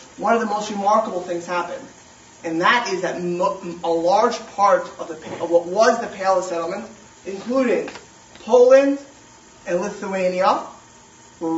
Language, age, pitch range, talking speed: English, 30-49, 170-215 Hz, 145 wpm